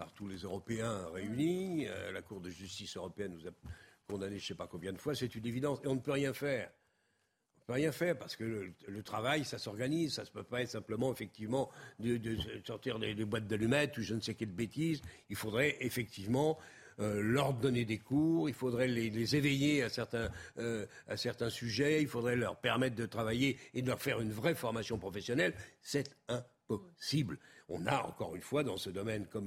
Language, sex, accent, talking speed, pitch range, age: French, male, French, 220 wpm, 110-145 Hz, 60-79